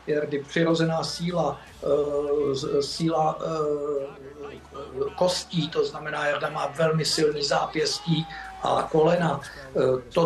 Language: Czech